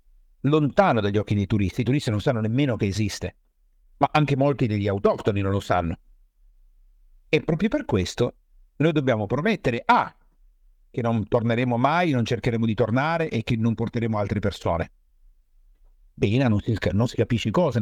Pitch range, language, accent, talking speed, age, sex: 100-130 Hz, Italian, native, 165 wpm, 50-69, male